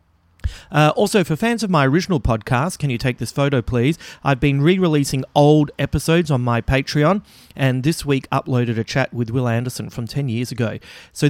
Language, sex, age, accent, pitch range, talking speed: English, male, 30-49, Australian, 115-150 Hz, 190 wpm